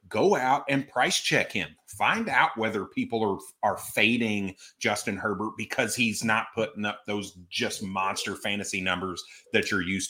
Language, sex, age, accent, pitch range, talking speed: English, male, 30-49, American, 95-120 Hz, 165 wpm